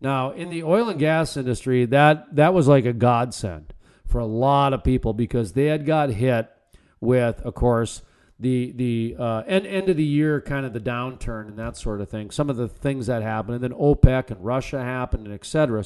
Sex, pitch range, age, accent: male, 115-155 Hz, 40-59, American